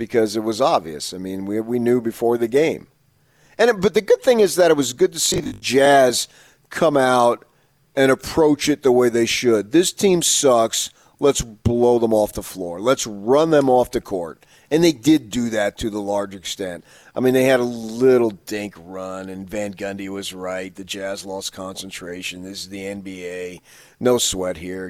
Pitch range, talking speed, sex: 95-125 Hz, 200 wpm, male